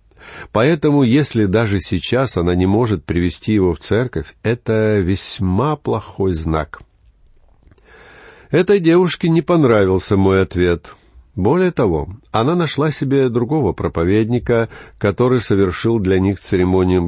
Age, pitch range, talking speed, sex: 50-69, 90-135 Hz, 115 wpm, male